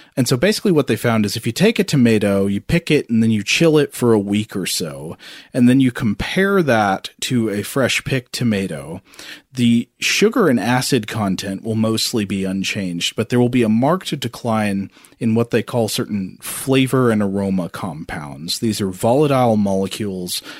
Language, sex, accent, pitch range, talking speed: English, male, American, 105-130 Hz, 185 wpm